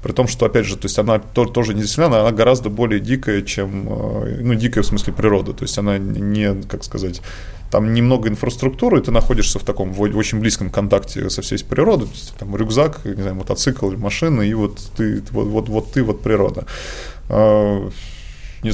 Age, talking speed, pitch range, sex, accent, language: 20-39, 170 wpm, 100-115 Hz, male, native, Russian